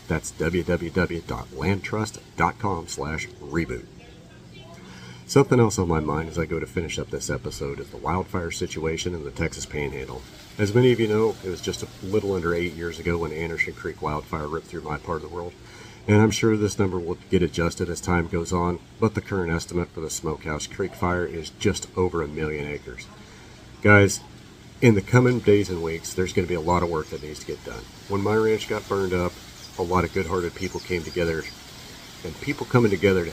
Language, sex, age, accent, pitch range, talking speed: English, male, 40-59, American, 85-105 Hz, 205 wpm